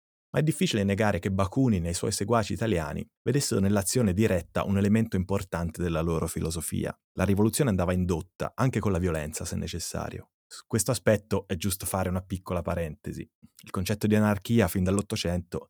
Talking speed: 170 wpm